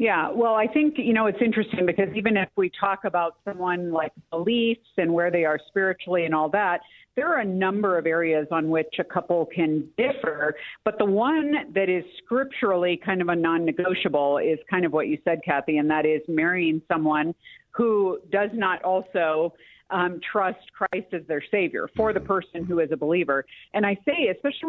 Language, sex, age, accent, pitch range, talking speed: English, female, 50-69, American, 170-220 Hz, 195 wpm